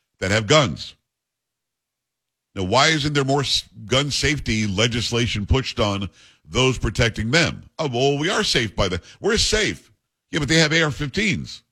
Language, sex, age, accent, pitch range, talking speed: English, male, 50-69, American, 105-145 Hz, 155 wpm